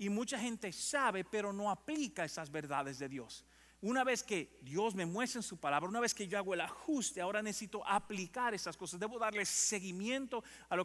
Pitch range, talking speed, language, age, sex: 155-215 Hz, 205 wpm, English, 40-59, male